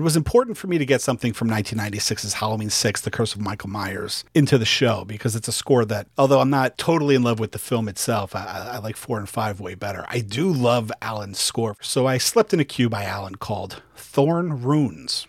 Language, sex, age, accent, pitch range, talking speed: English, male, 40-59, American, 105-135 Hz, 230 wpm